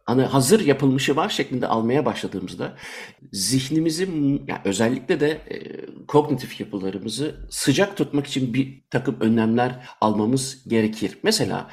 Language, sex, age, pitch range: Turkish, male, 60-79, 115-145 Hz